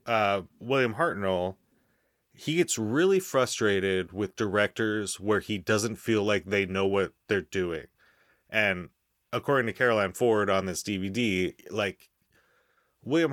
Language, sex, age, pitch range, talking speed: English, male, 30-49, 95-125 Hz, 130 wpm